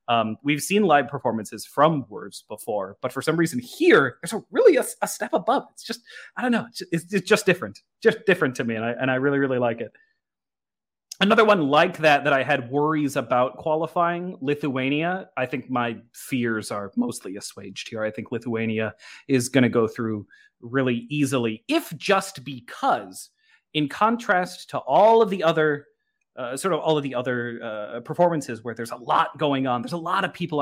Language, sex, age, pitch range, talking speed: English, male, 30-49, 120-175 Hz, 200 wpm